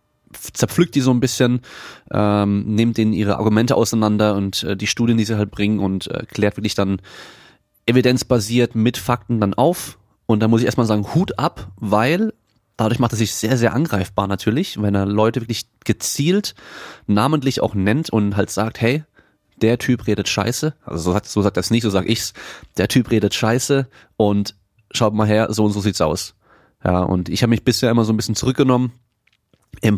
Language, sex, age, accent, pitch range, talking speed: German, male, 30-49, German, 100-120 Hz, 195 wpm